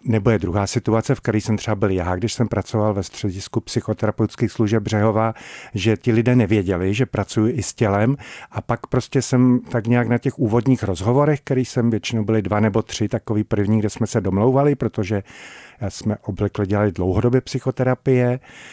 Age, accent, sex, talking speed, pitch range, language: 50-69, native, male, 180 wpm, 105-130 Hz, Czech